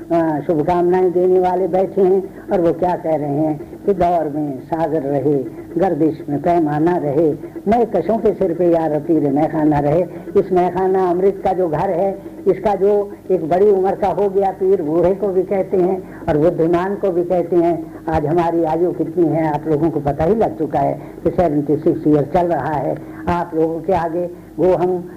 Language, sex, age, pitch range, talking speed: Hindi, female, 60-79, 165-185 Hz, 195 wpm